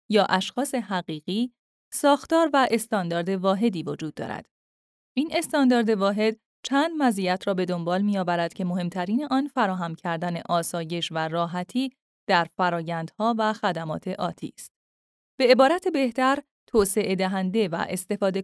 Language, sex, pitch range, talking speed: Persian, female, 180-245 Hz, 125 wpm